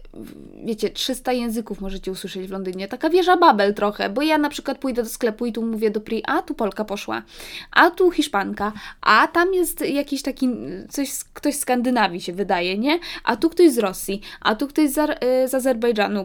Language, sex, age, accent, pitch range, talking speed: Polish, female, 20-39, native, 200-255 Hz, 200 wpm